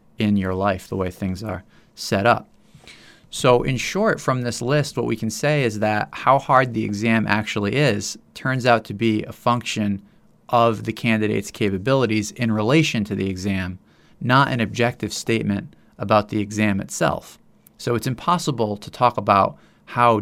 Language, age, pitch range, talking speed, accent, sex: English, 30-49, 100-120 Hz, 170 wpm, American, male